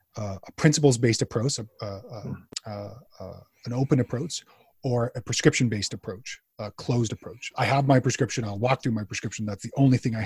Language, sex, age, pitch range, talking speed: English, male, 30-49, 110-135 Hz, 195 wpm